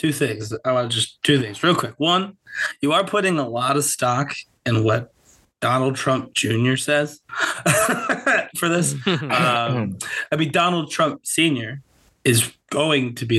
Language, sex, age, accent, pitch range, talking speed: English, male, 20-39, American, 115-145 Hz, 160 wpm